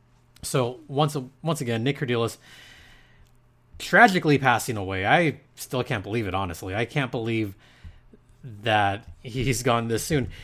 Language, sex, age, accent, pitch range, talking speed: English, male, 30-49, American, 110-130 Hz, 130 wpm